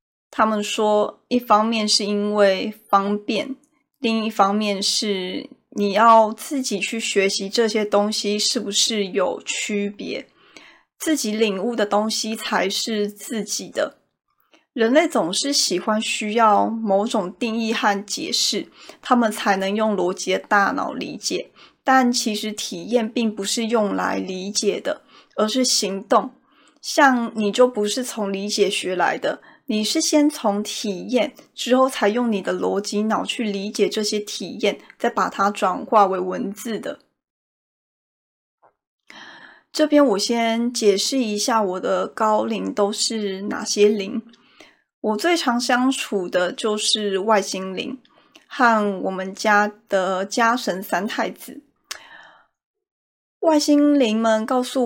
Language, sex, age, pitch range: Chinese, female, 20-39, 200-240 Hz